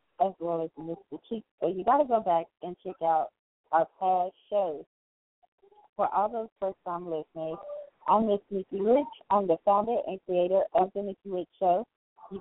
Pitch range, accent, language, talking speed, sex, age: 185-240 Hz, American, English, 185 wpm, female, 30-49